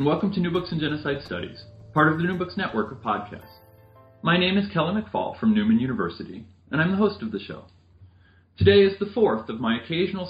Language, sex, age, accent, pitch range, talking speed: English, male, 40-59, American, 100-165 Hz, 220 wpm